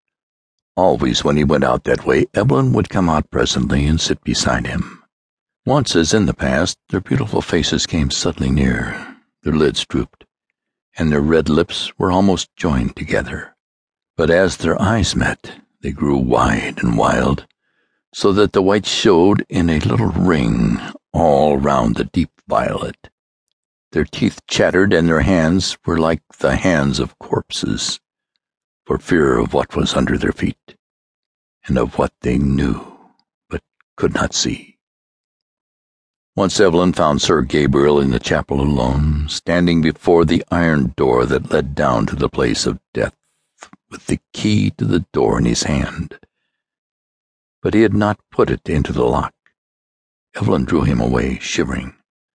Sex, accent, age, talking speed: male, American, 60-79, 155 wpm